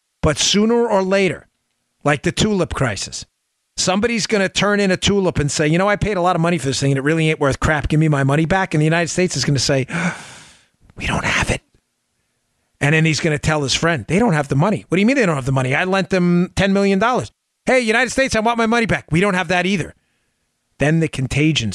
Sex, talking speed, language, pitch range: male, 260 wpm, English, 150-190 Hz